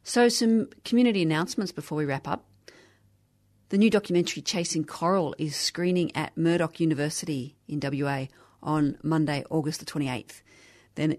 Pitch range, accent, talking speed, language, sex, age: 140-165 Hz, Australian, 140 wpm, English, female, 40-59